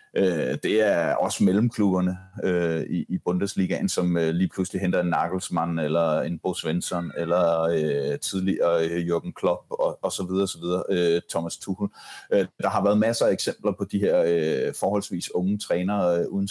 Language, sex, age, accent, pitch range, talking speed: Danish, male, 30-49, native, 85-105 Hz, 140 wpm